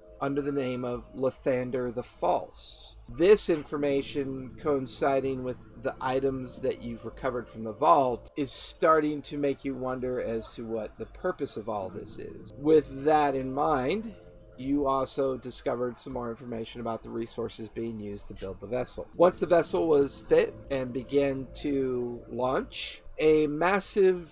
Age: 40-59